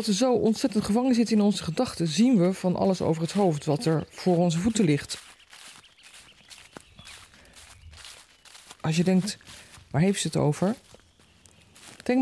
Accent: Dutch